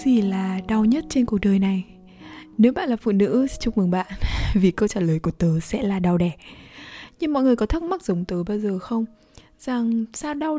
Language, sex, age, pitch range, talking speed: Vietnamese, female, 20-39, 195-245 Hz, 225 wpm